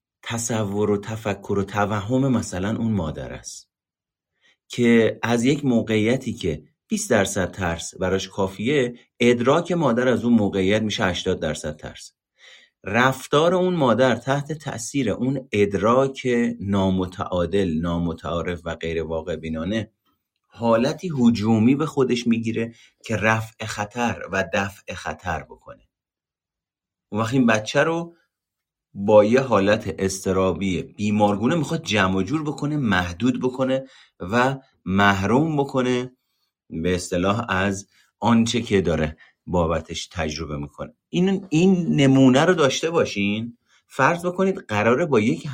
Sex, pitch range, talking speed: male, 95-130 Hz, 120 wpm